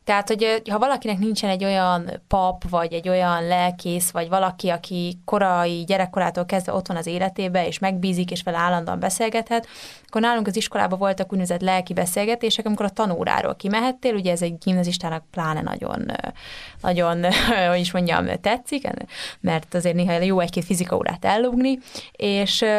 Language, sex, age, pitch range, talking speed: Hungarian, female, 20-39, 185-225 Hz, 155 wpm